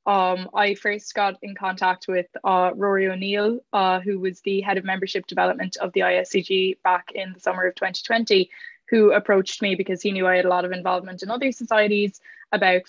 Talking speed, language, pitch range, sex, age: 195 wpm, English, 180-205 Hz, female, 10-29